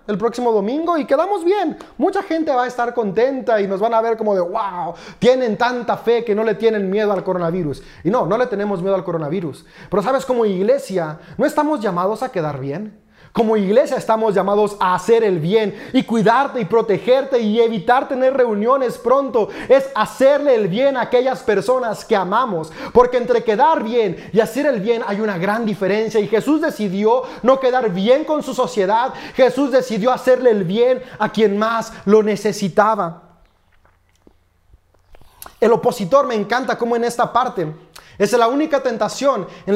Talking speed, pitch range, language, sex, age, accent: 180 wpm, 205-260 Hz, Spanish, male, 30-49, Mexican